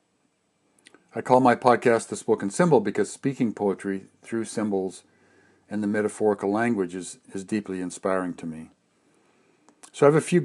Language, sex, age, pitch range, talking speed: English, male, 50-69, 95-115 Hz, 155 wpm